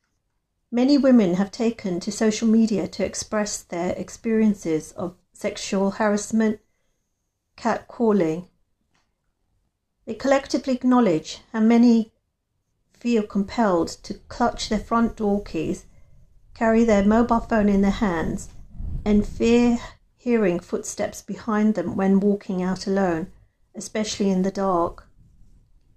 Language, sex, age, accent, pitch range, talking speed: English, female, 40-59, British, 185-220 Hz, 115 wpm